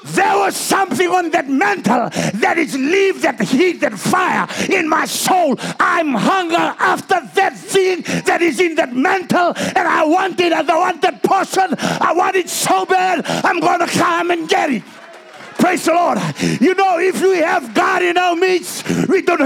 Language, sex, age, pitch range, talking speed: English, male, 50-69, 305-370 Hz, 185 wpm